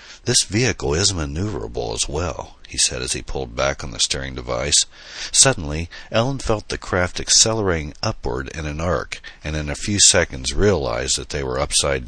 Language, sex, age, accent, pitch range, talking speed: English, male, 60-79, American, 75-95 Hz, 180 wpm